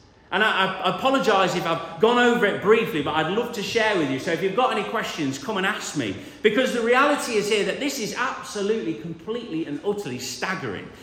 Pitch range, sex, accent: 165-235 Hz, male, British